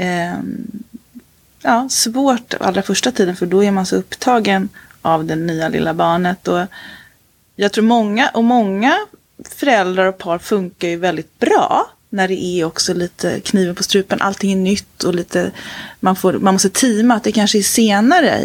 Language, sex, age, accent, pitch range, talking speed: Swedish, female, 30-49, native, 185-240 Hz, 170 wpm